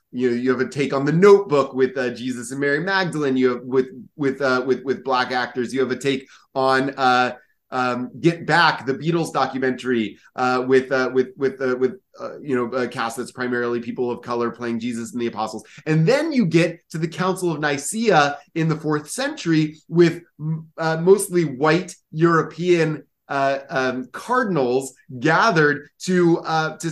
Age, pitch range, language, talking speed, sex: 30-49, 130-180 Hz, English, 185 wpm, male